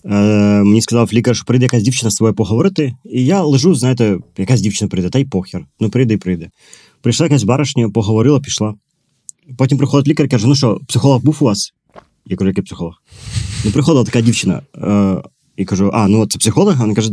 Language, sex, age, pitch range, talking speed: Ukrainian, male, 20-39, 110-145 Hz, 205 wpm